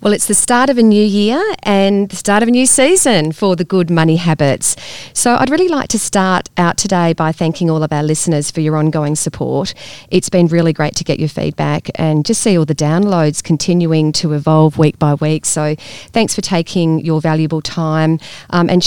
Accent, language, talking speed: Australian, English, 215 wpm